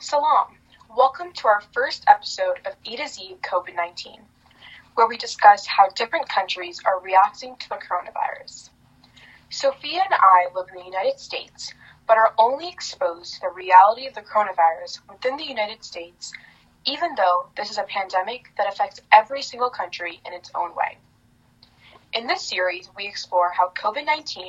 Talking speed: 160 wpm